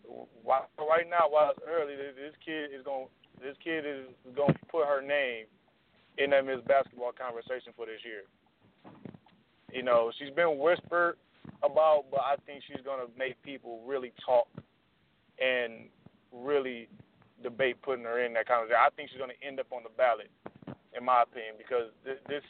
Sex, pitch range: male, 125-150 Hz